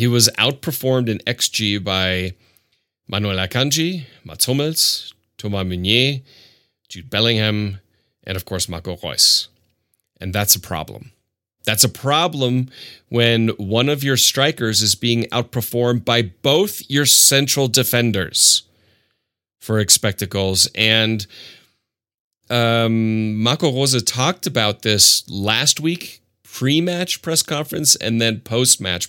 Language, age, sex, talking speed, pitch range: English, 30-49, male, 115 wpm, 100-125 Hz